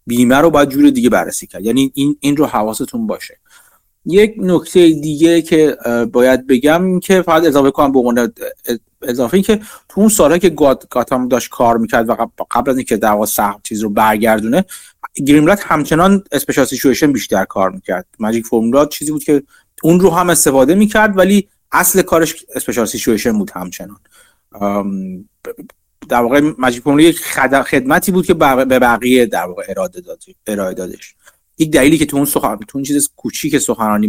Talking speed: 155 wpm